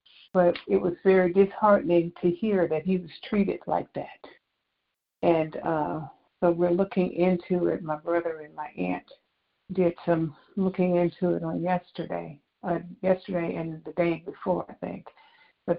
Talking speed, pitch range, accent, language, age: 155 wpm, 165-185 Hz, American, English, 60-79